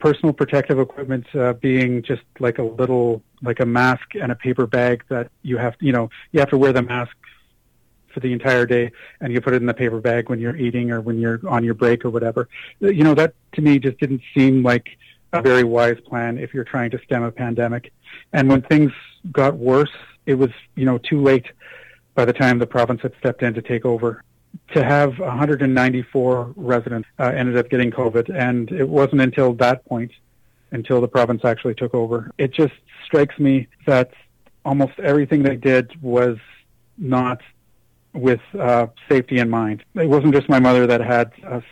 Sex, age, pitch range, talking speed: male, 40-59, 120-135 Hz, 195 wpm